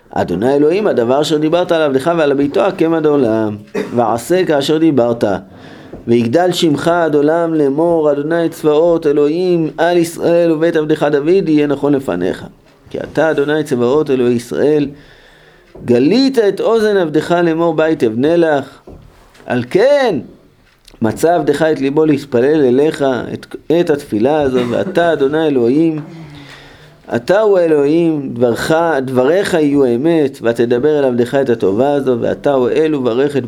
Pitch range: 130-165 Hz